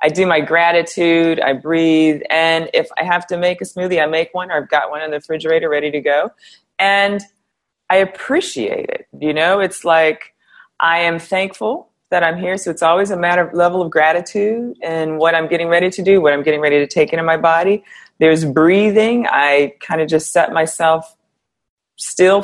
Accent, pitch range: American, 155-190 Hz